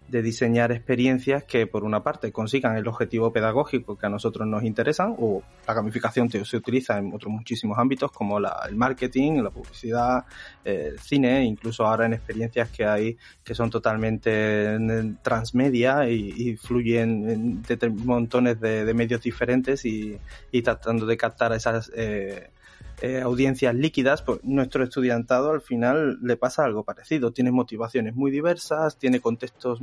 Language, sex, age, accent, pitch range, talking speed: Spanish, male, 20-39, Spanish, 115-140 Hz, 165 wpm